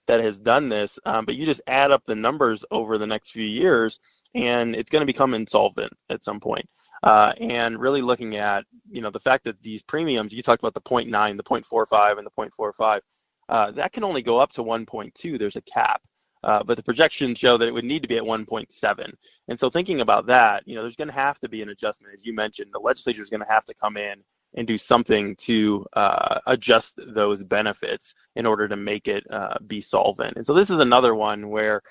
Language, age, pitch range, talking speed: English, 20-39, 105-125 Hz, 230 wpm